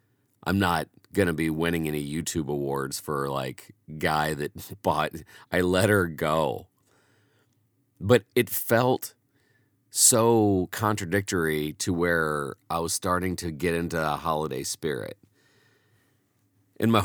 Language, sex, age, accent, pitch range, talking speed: English, male, 40-59, American, 90-115 Hz, 125 wpm